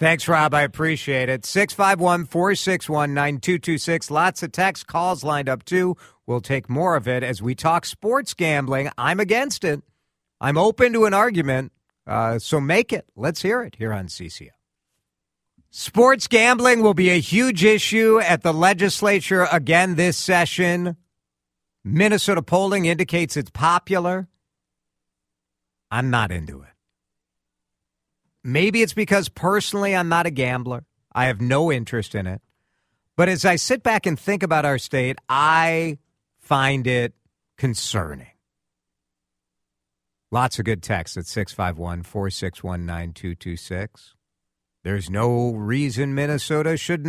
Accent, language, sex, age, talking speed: American, English, male, 50-69, 130 wpm